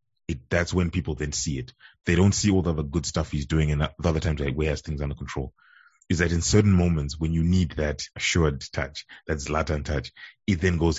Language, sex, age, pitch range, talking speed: English, male, 20-39, 70-85 Hz, 230 wpm